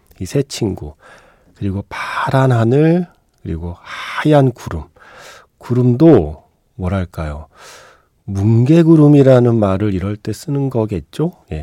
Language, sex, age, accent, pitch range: Korean, male, 40-59, native, 95-135 Hz